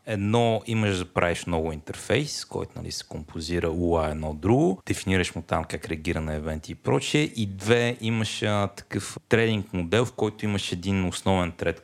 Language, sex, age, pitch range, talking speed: Bulgarian, male, 30-49, 85-110 Hz, 170 wpm